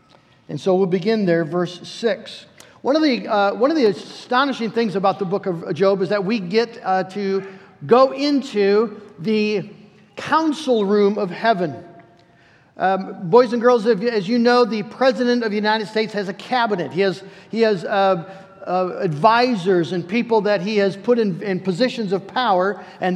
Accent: American